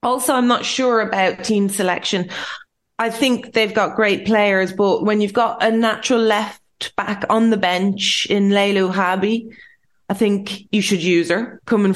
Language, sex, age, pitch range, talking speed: English, female, 20-39, 190-220 Hz, 170 wpm